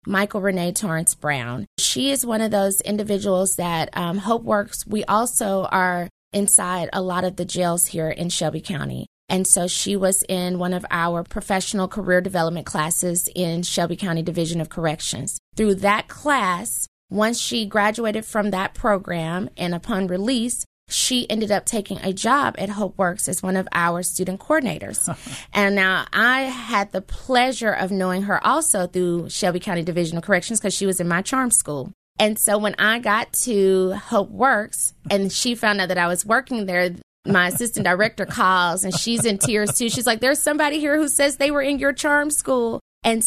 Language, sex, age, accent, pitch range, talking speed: English, female, 20-39, American, 180-215 Hz, 185 wpm